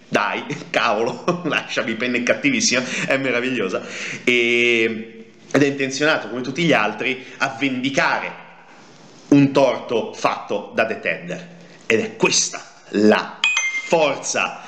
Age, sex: 30-49, male